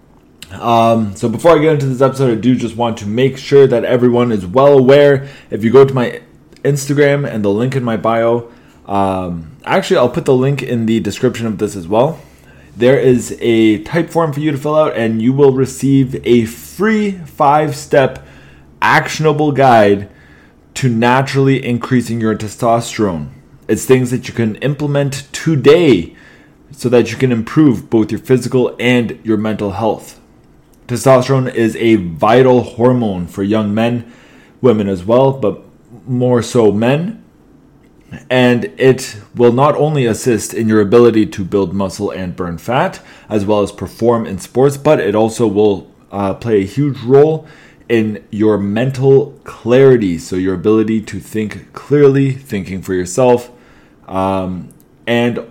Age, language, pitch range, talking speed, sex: 20-39, English, 105-135 Hz, 160 wpm, male